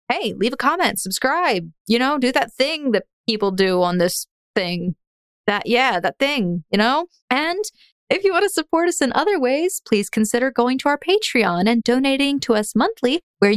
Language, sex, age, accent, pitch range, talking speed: English, female, 20-39, American, 185-270 Hz, 195 wpm